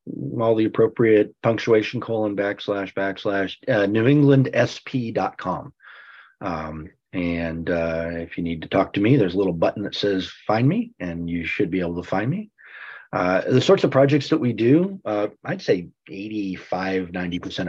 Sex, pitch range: male, 85-110 Hz